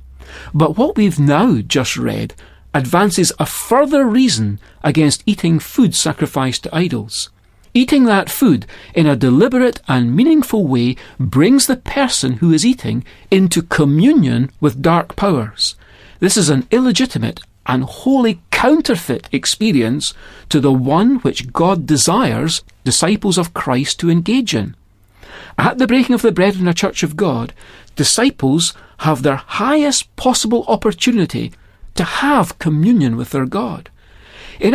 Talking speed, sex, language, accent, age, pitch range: 140 wpm, male, English, British, 40-59, 130-220 Hz